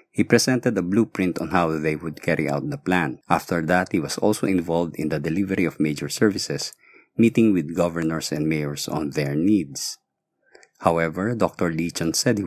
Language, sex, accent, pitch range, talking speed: English, male, Filipino, 85-110 Hz, 185 wpm